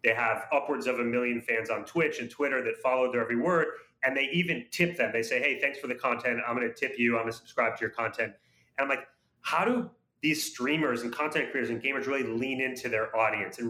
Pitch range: 125-170 Hz